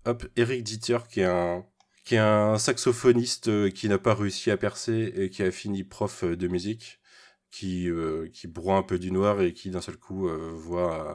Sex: male